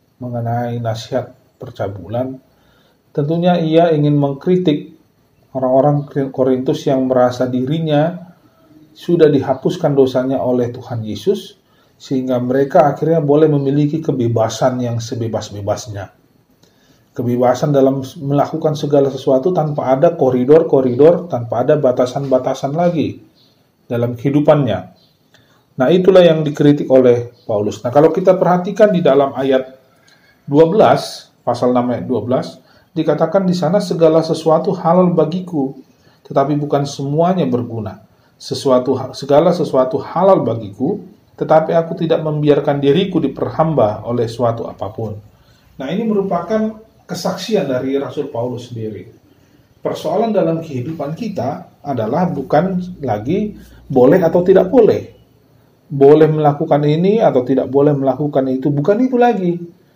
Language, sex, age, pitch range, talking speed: Indonesian, male, 40-59, 125-160 Hz, 110 wpm